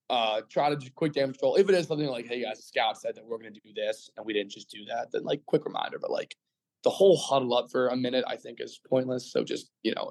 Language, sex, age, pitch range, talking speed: English, male, 20-39, 120-150 Hz, 295 wpm